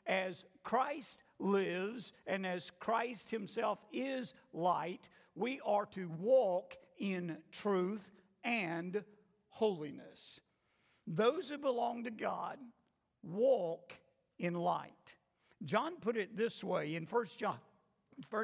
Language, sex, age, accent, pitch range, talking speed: English, male, 50-69, American, 175-225 Hz, 105 wpm